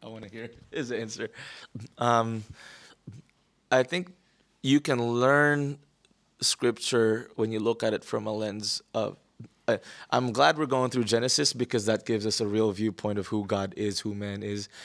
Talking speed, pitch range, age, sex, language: 170 wpm, 110-120 Hz, 20-39, male, English